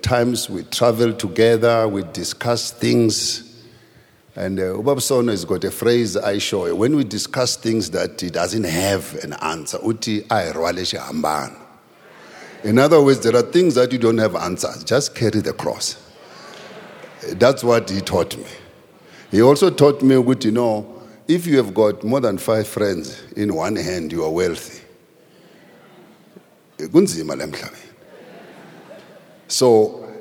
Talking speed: 135 wpm